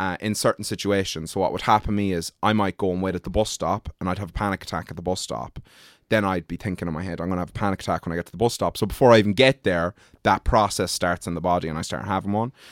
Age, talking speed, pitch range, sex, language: 20-39, 320 wpm, 90-105 Hz, male, English